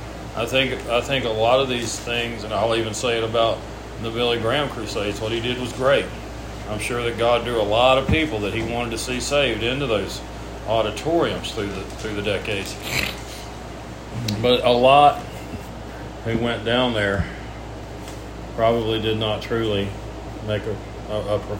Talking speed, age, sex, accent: 170 wpm, 40-59, male, American